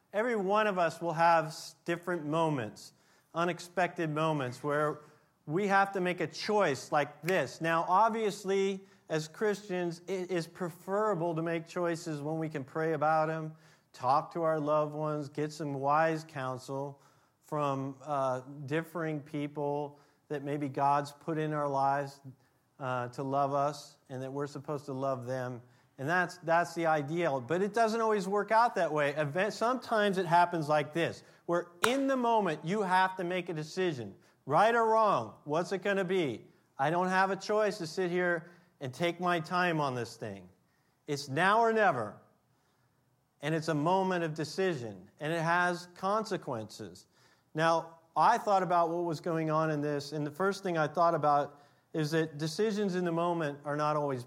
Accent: American